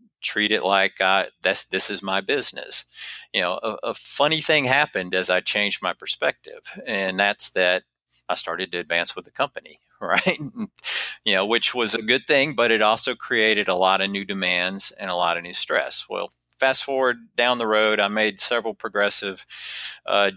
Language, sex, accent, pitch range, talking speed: English, male, American, 95-115 Hz, 190 wpm